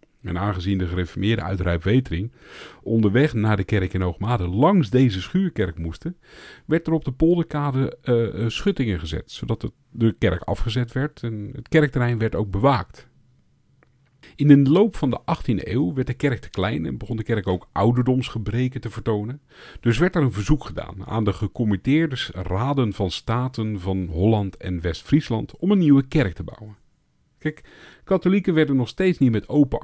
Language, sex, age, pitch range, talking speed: Dutch, male, 50-69, 95-140 Hz, 170 wpm